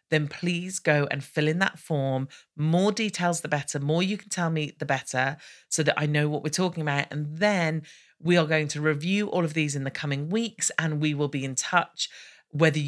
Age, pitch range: 40-59, 135-170 Hz